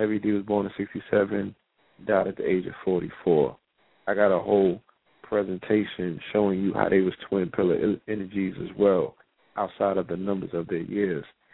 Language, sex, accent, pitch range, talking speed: English, male, American, 95-105 Hz, 170 wpm